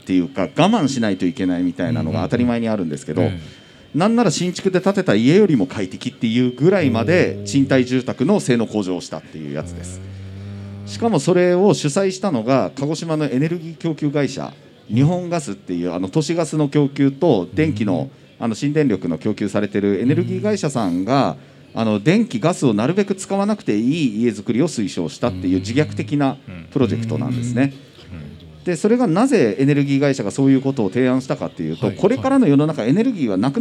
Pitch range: 115-175 Hz